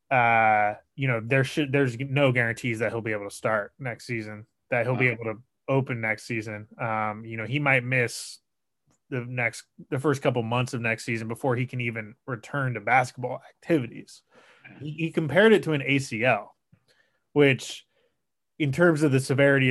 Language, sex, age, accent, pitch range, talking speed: English, male, 20-39, American, 115-145 Hz, 185 wpm